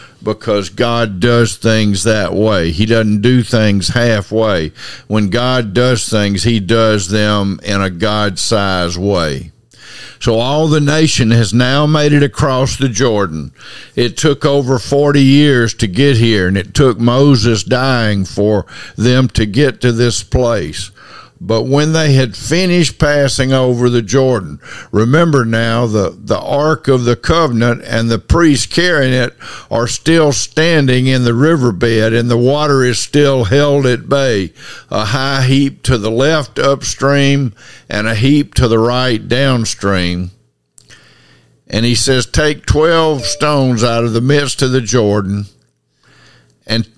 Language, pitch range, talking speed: English, 105-135 Hz, 150 wpm